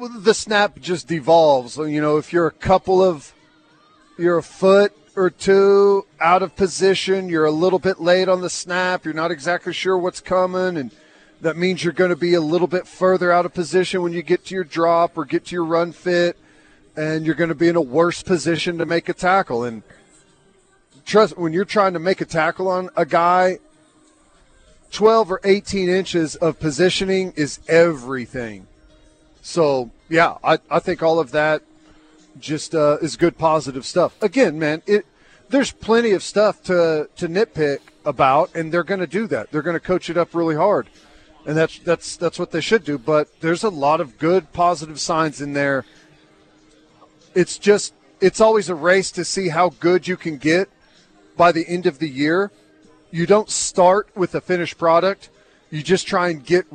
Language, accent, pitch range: English, American, 160-185 Hz